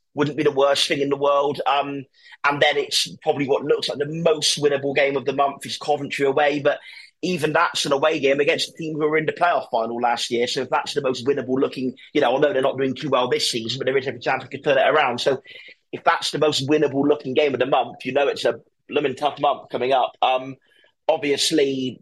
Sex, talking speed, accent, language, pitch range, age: male, 250 wpm, British, English, 125-155 Hz, 30-49